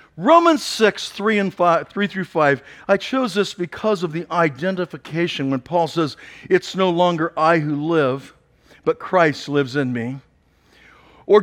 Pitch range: 145-200 Hz